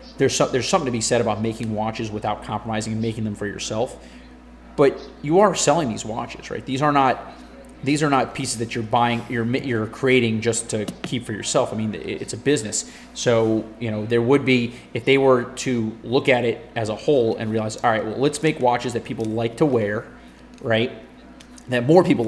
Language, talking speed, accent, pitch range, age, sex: English, 215 wpm, American, 110-125 Hz, 30-49, male